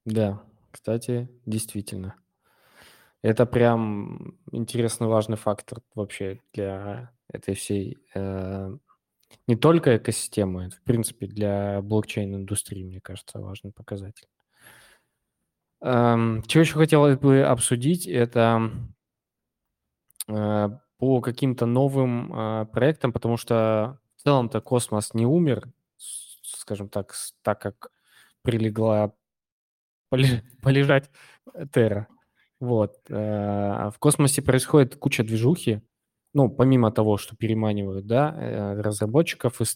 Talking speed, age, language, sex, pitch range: 100 wpm, 20-39, Russian, male, 105-125 Hz